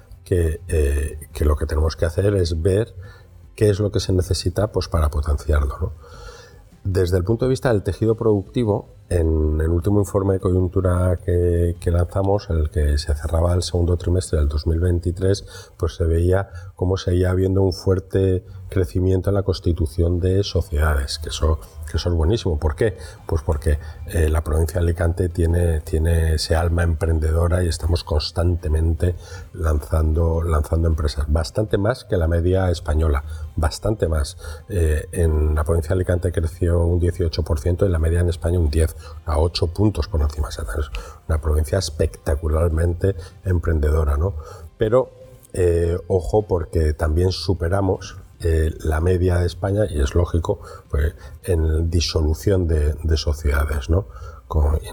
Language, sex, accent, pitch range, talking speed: Spanish, male, Spanish, 80-95 Hz, 155 wpm